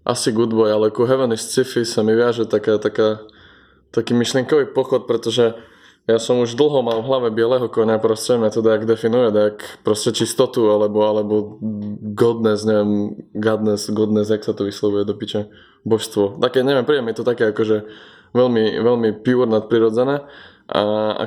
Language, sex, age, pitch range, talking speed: Slovak, male, 20-39, 105-120 Hz, 165 wpm